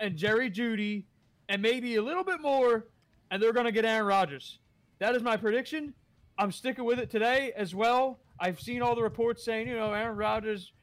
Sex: male